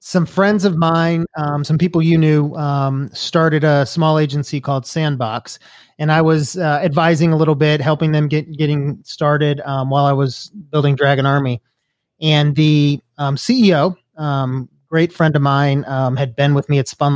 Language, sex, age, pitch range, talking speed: English, male, 30-49, 130-160 Hz, 180 wpm